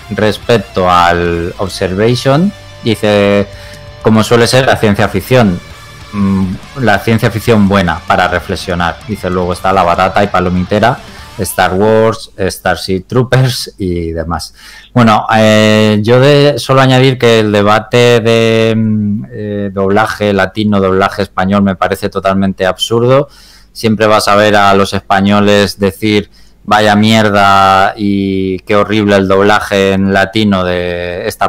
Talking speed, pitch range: 125 wpm, 95-110 Hz